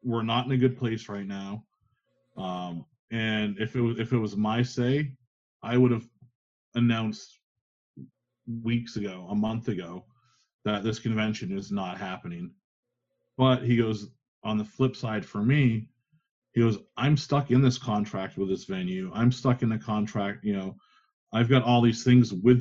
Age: 30-49